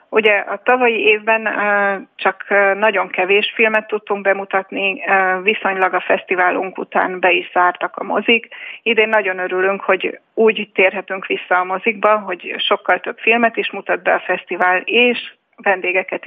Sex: female